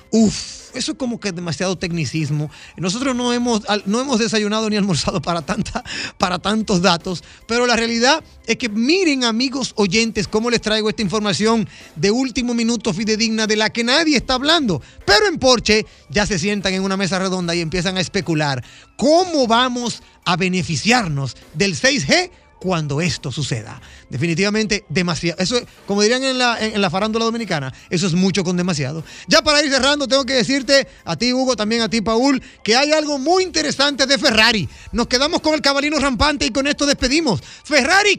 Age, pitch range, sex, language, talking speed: 30-49, 185-265 Hz, male, Spanish, 180 wpm